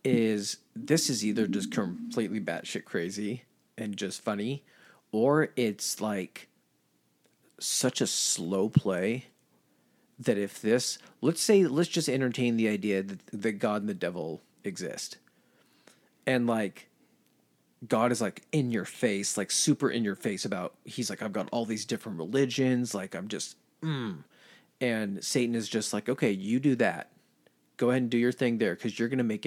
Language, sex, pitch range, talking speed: English, male, 105-135 Hz, 165 wpm